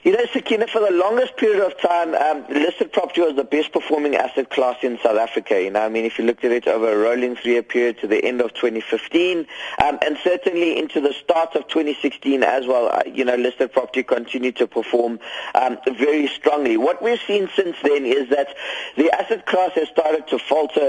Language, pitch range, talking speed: English, 125-160 Hz, 215 wpm